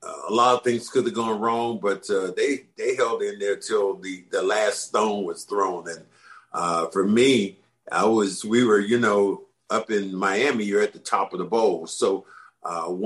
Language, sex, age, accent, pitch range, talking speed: English, male, 50-69, American, 95-125 Hz, 205 wpm